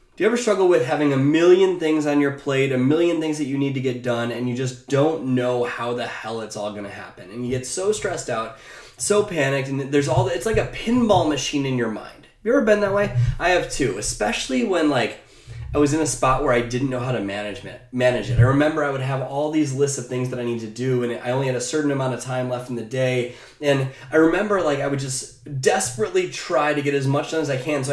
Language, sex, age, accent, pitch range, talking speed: English, male, 20-39, American, 125-155 Hz, 270 wpm